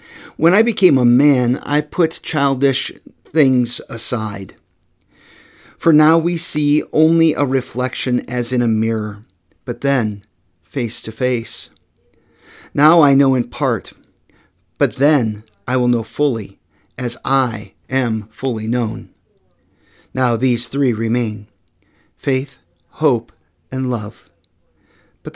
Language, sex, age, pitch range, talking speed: English, male, 50-69, 105-140 Hz, 120 wpm